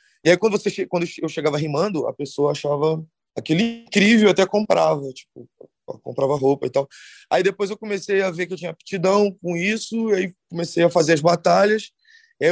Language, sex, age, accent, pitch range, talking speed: Portuguese, male, 20-39, Brazilian, 150-190 Hz, 185 wpm